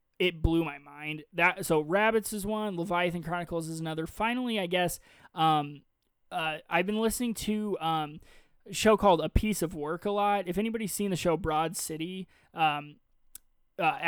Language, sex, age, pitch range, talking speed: English, male, 20-39, 155-185 Hz, 175 wpm